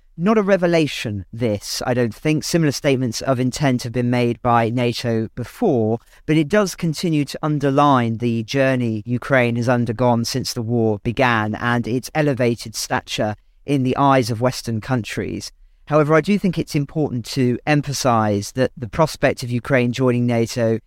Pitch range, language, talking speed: 120-140 Hz, English, 165 wpm